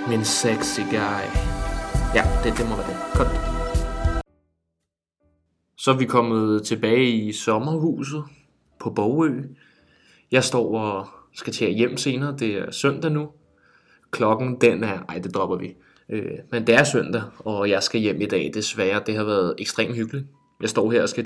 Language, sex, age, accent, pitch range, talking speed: Danish, male, 20-39, native, 105-130 Hz, 165 wpm